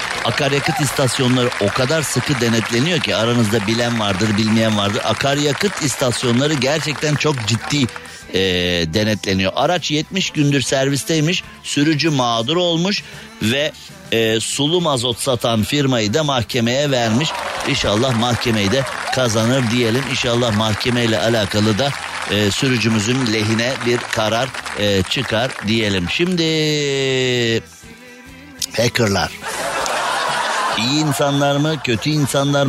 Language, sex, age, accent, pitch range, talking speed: Turkish, male, 60-79, native, 115-150 Hz, 110 wpm